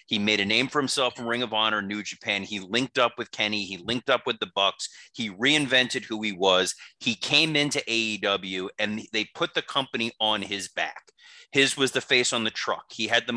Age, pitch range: 30-49, 105-135 Hz